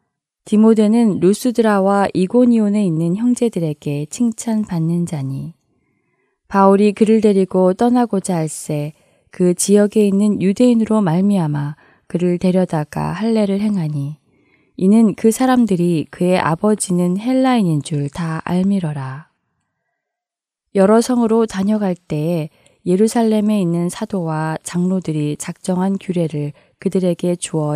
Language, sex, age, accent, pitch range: Korean, female, 20-39, native, 165-210 Hz